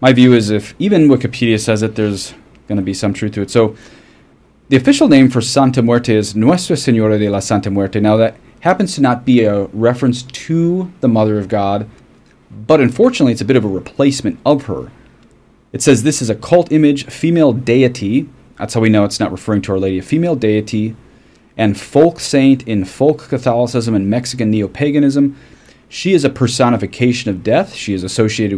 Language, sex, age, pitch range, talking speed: English, male, 30-49, 105-130 Hz, 195 wpm